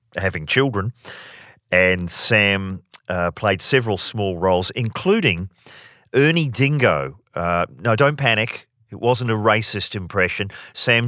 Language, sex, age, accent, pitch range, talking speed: English, male, 40-59, Australian, 90-115 Hz, 120 wpm